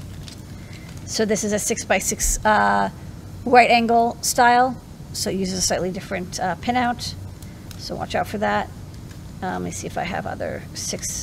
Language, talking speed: English, 175 wpm